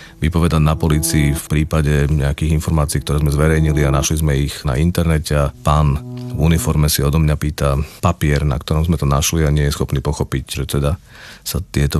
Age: 40-59